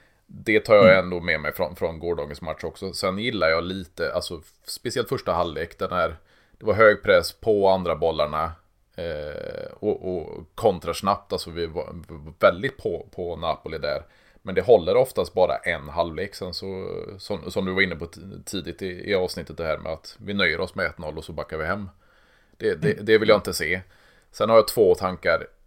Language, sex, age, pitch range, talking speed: Swedish, male, 20-39, 80-95 Hz, 195 wpm